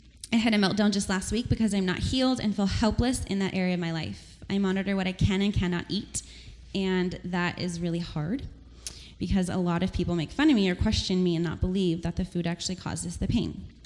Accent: American